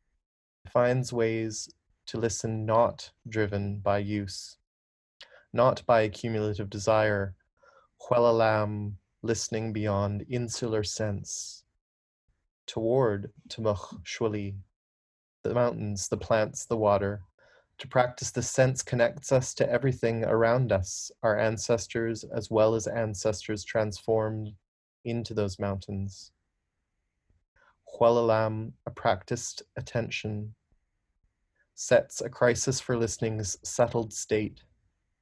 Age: 20-39